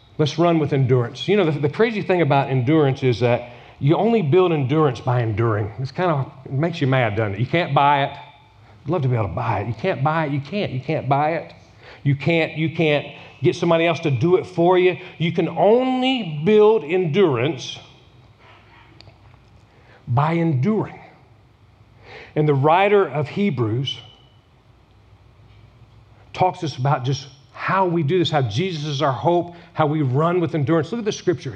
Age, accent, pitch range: 40-59, American, 125-195 Hz